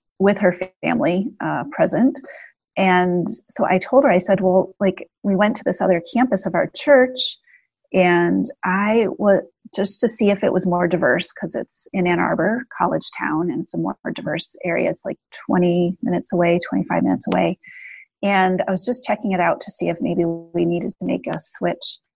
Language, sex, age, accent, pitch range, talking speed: English, female, 30-49, American, 180-225 Hz, 195 wpm